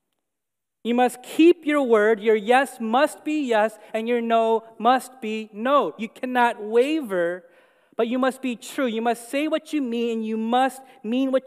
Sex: male